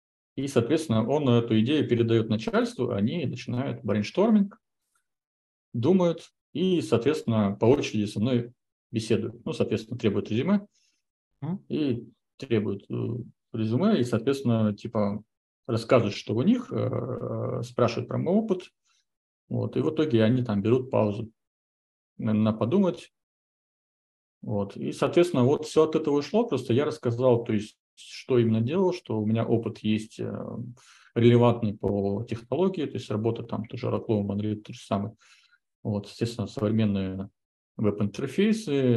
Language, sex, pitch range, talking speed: Russian, male, 105-130 Hz, 130 wpm